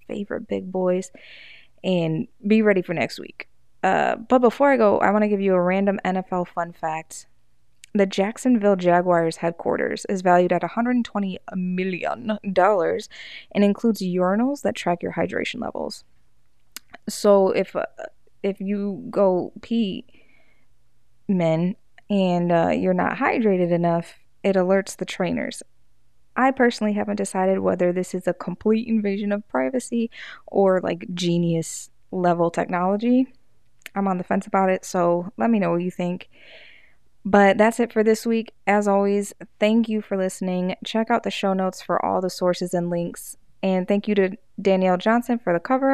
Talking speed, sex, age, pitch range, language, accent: 160 wpm, female, 20-39, 180-220 Hz, English, American